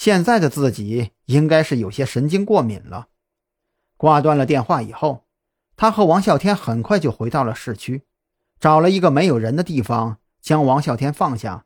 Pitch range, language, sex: 120-180 Hz, Chinese, male